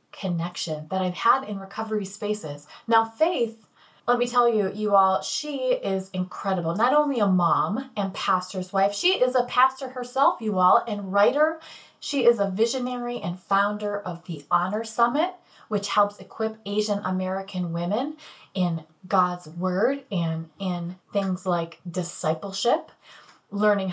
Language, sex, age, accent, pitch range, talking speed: English, female, 30-49, American, 175-225 Hz, 150 wpm